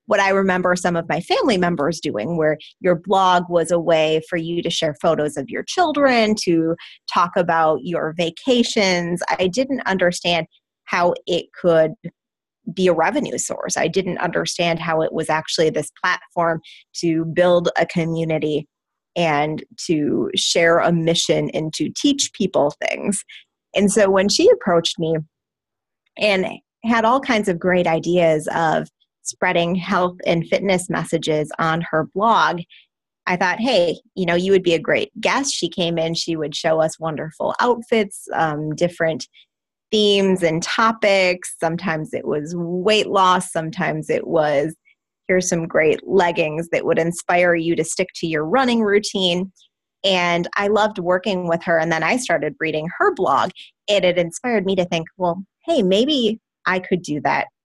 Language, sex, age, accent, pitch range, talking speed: English, female, 20-39, American, 165-195 Hz, 160 wpm